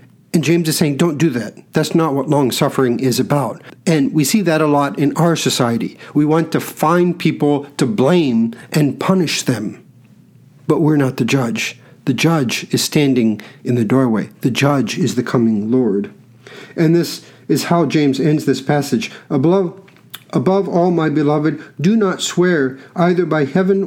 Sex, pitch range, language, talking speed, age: male, 130-170 Hz, English, 175 wpm, 50-69